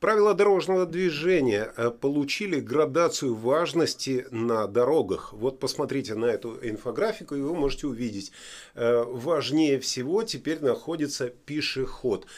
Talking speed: 105 wpm